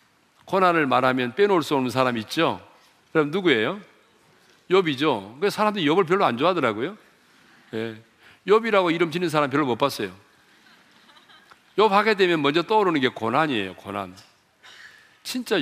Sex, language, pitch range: male, Korean, 130-180 Hz